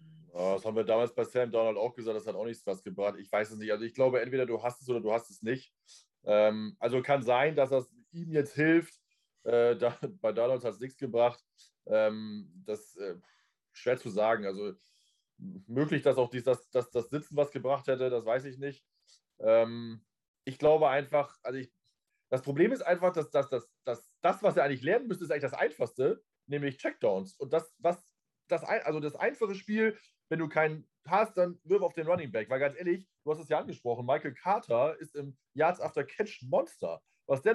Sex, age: male, 20-39